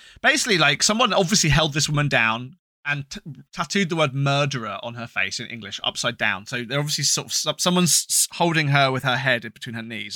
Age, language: 20-39, English